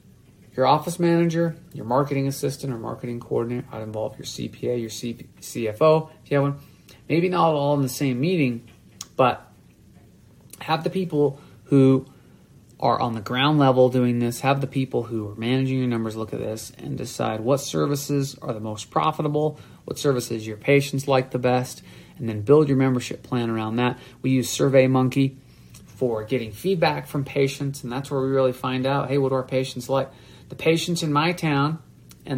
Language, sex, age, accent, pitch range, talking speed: English, male, 30-49, American, 120-140 Hz, 185 wpm